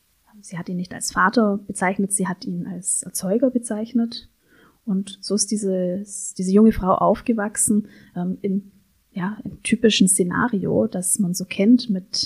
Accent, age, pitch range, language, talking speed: German, 30-49, 185-215 Hz, German, 150 wpm